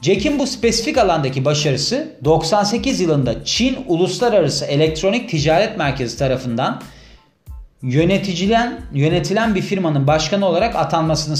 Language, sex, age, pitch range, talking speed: Turkish, male, 30-49, 140-210 Hz, 100 wpm